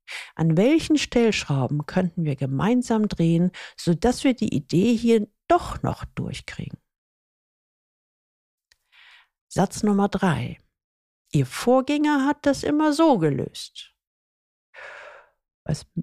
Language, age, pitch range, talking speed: German, 50-69, 155-235 Hz, 95 wpm